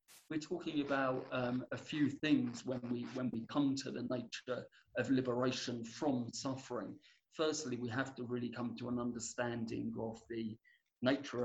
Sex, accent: male, British